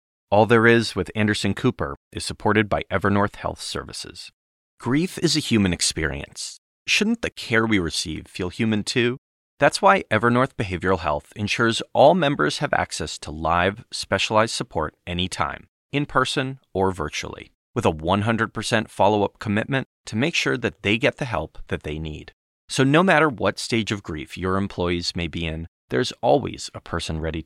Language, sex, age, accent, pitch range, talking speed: English, male, 30-49, American, 85-115 Hz, 170 wpm